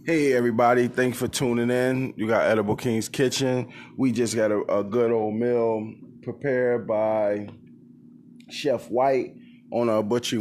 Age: 20-39